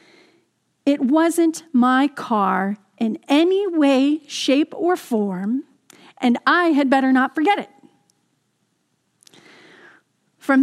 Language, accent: English, American